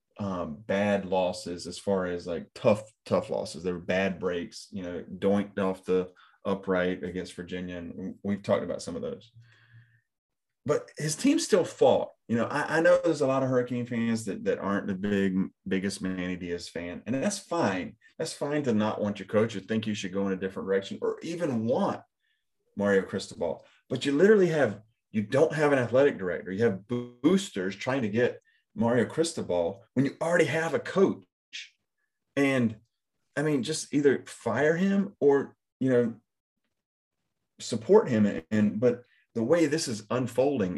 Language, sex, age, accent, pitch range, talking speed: English, male, 30-49, American, 95-135 Hz, 180 wpm